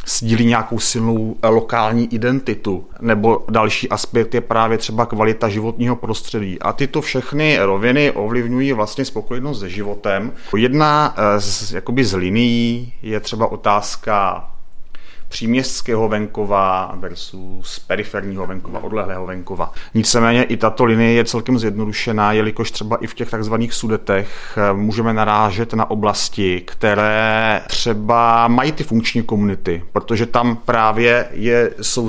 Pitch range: 105-120 Hz